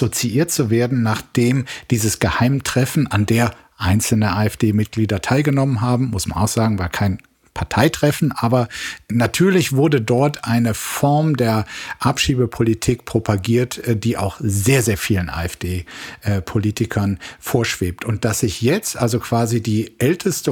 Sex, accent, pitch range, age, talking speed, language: male, German, 110-145 Hz, 50-69, 125 wpm, German